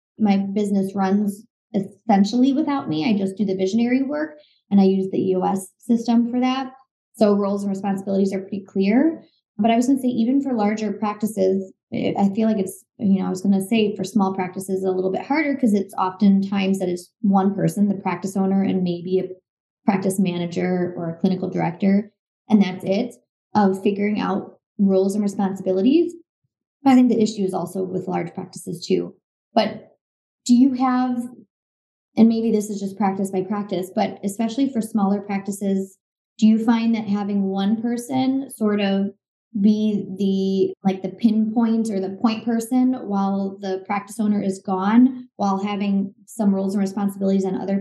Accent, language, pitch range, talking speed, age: American, English, 195-225 Hz, 175 wpm, 20-39